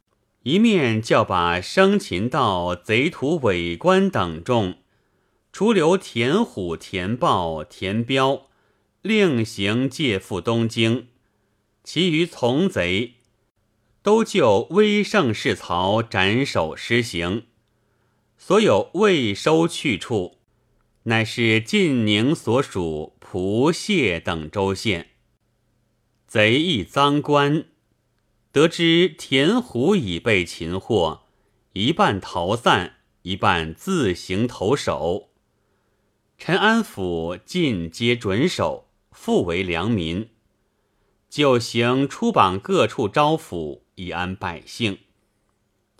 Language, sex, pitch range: Chinese, male, 100-140 Hz